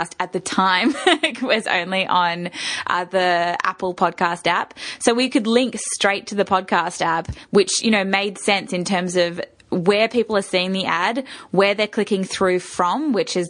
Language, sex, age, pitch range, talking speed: English, female, 10-29, 180-225 Hz, 185 wpm